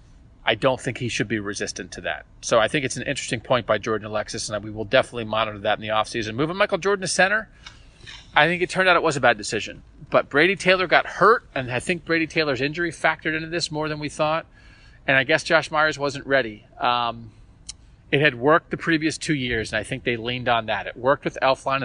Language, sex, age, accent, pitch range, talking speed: English, male, 30-49, American, 115-155 Hz, 240 wpm